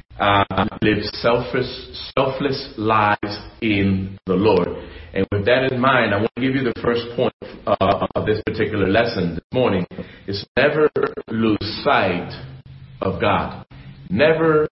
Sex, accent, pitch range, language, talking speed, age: male, American, 100-125 Hz, English, 145 wpm, 40-59